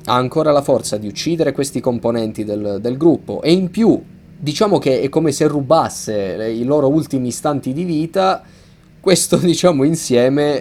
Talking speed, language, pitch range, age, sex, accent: 165 wpm, Italian, 110-155 Hz, 20-39, male, native